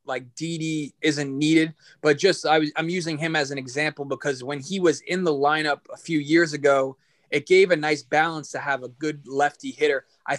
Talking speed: 215 wpm